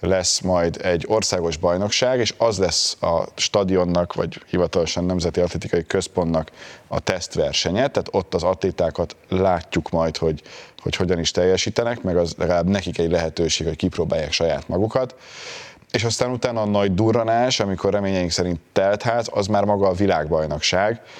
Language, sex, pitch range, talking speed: Hungarian, male, 90-115 Hz, 155 wpm